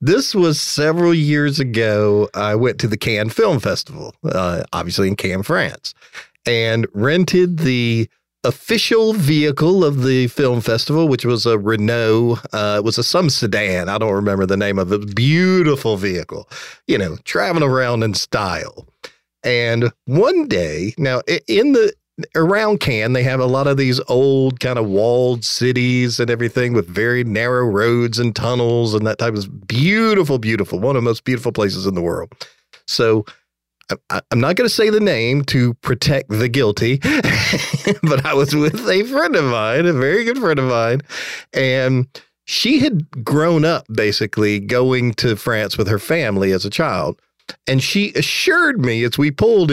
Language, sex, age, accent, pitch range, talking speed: English, male, 40-59, American, 110-150 Hz, 175 wpm